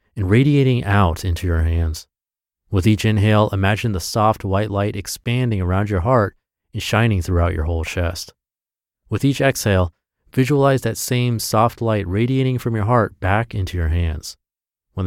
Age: 30-49